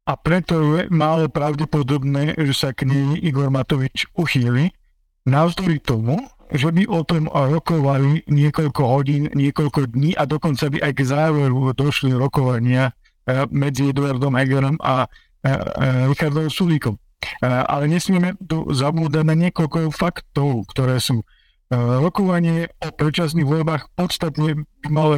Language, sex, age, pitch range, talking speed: Slovak, male, 50-69, 135-160 Hz, 120 wpm